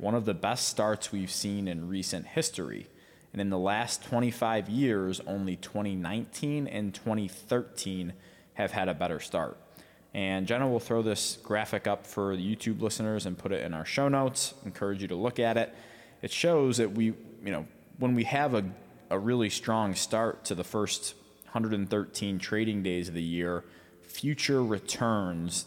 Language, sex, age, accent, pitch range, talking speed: English, male, 20-39, American, 90-110 Hz, 175 wpm